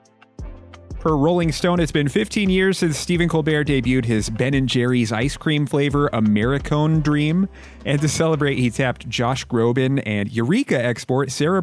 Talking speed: 160 wpm